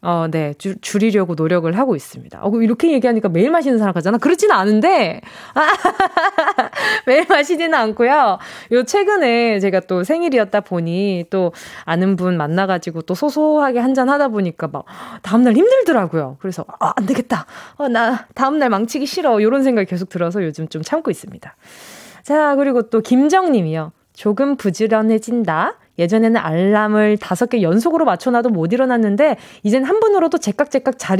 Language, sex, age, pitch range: Korean, female, 20-39, 195-295 Hz